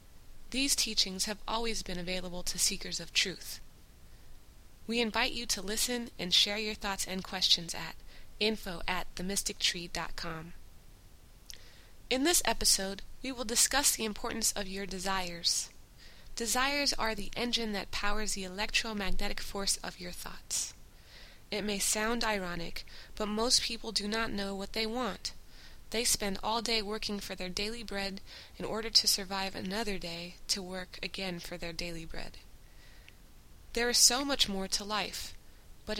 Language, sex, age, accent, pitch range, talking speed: English, female, 20-39, American, 180-220 Hz, 150 wpm